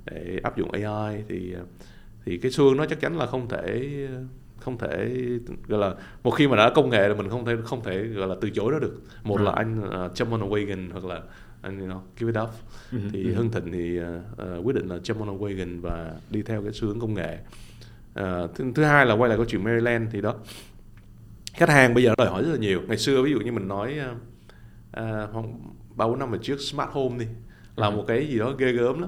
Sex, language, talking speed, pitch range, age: male, Vietnamese, 235 wpm, 100-130 Hz, 20-39